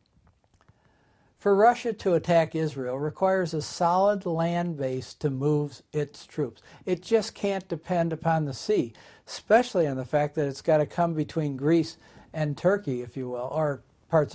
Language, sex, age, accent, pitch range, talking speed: English, male, 60-79, American, 135-175 Hz, 165 wpm